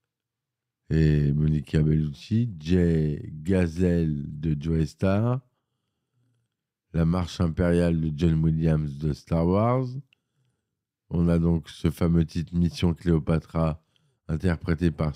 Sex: male